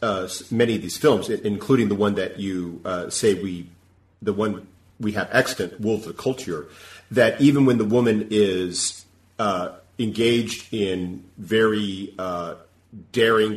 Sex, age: male, 40-59